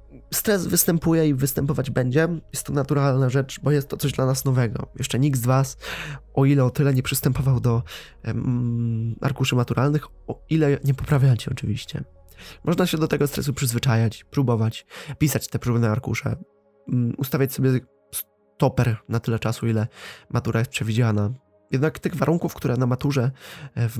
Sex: male